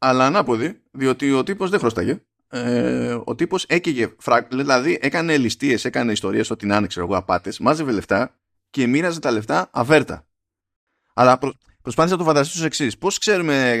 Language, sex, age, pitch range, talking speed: Greek, male, 20-39, 105-150 Hz, 155 wpm